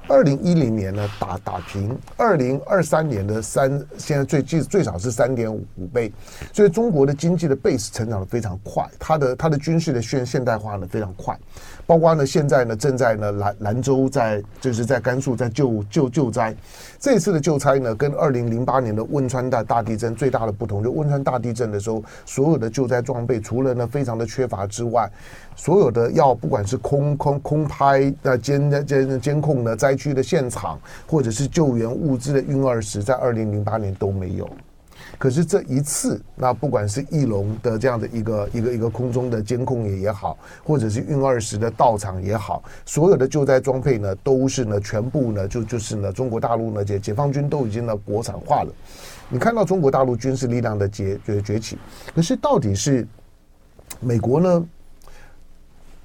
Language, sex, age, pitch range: Chinese, male, 30-49, 110-140 Hz